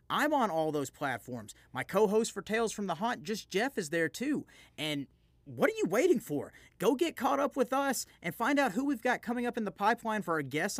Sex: male